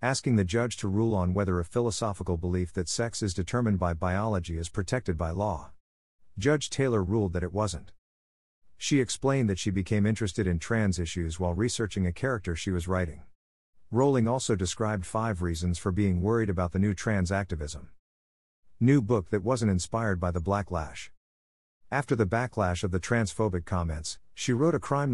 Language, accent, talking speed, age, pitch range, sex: English, American, 175 wpm, 50-69, 90-115 Hz, male